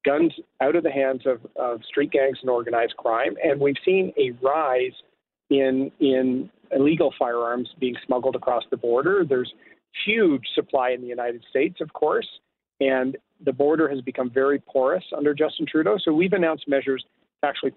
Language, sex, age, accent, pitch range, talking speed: English, male, 40-59, American, 130-175 Hz, 170 wpm